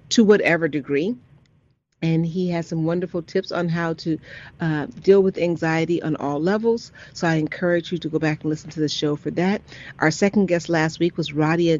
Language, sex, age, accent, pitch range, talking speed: English, female, 40-59, American, 160-195 Hz, 205 wpm